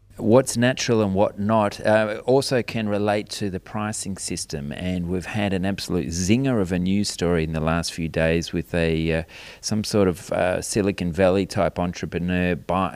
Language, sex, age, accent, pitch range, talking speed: English, male, 30-49, Australian, 85-100 Hz, 185 wpm